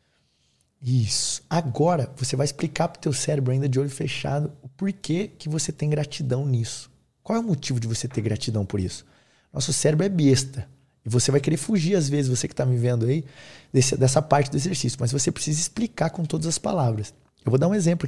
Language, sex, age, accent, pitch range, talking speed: Portuguese, male, 20-39, Brazilian, 130-165 Hz, 210 wpm